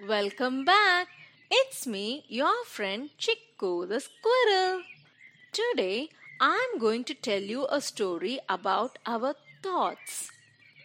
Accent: Indian